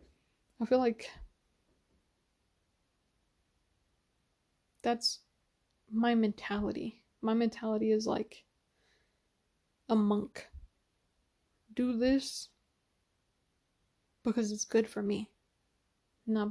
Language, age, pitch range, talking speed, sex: English, 20-39, 215-235 Hz, 75 wpm, female